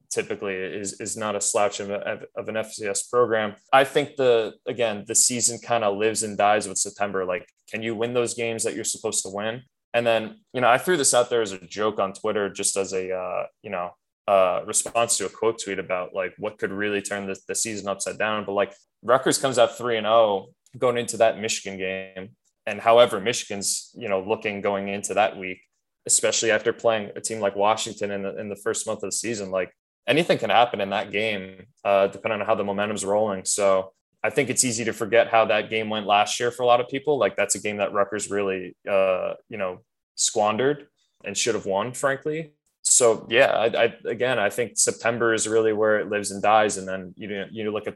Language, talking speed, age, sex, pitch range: English, 225 wpm, 20-39, male, 100-115 Hz